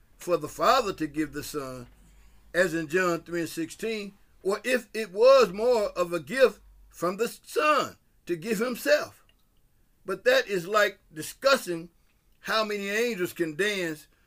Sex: male